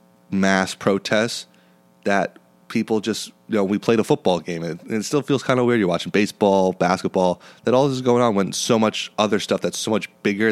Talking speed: 215 wpm